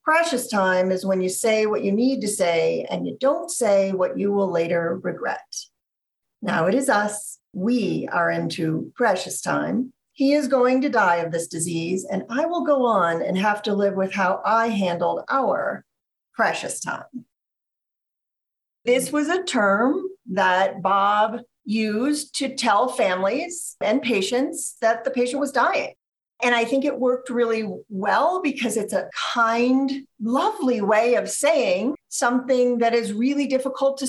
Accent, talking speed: American, 160 wpm